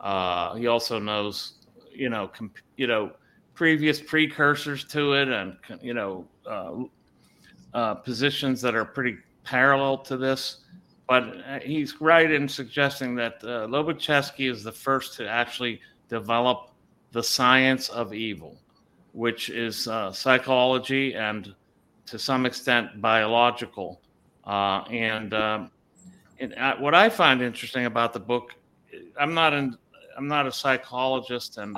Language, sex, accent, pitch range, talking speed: English, male, American, 110-130 Hz, 135 wpm